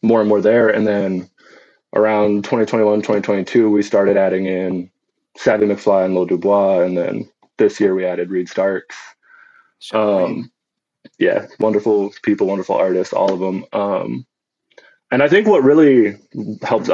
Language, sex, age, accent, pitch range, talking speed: English, male, 20-39, American, 95-110 Hz, 150 wpm